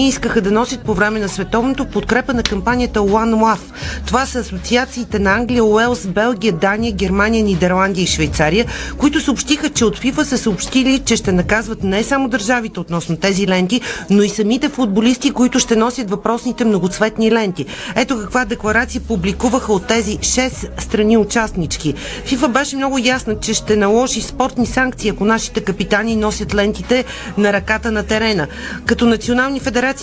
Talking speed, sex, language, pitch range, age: 160 wpm, female, Bulgarian, 210-255 Hz, 40-59